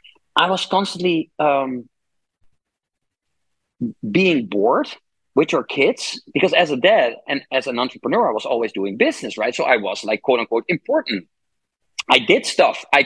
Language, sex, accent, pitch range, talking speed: English, male, Dutch, 135-210 Hz, 155 wpm